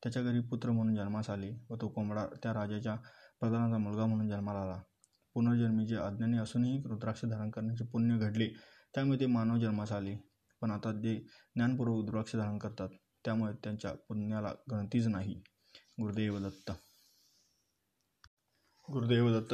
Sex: male